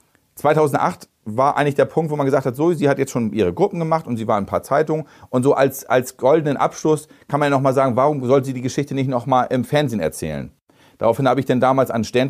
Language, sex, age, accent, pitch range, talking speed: German, male, 40-59, German, 120-150 Hz, 255 wpm